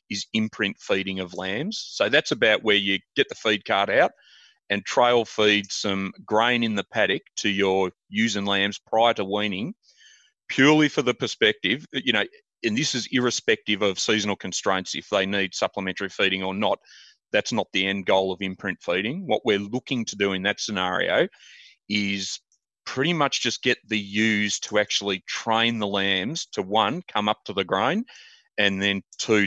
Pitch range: 95-115 Hz